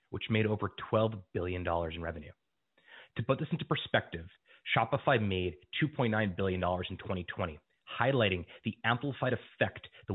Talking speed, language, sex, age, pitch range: 135 wpm, English, male, 30-49, 90-115 Hz